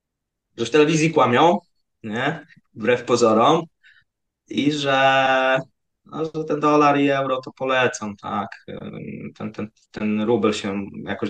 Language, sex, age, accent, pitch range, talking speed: Polish, male, 20-39, native, 105-145 Hz, 115 wpm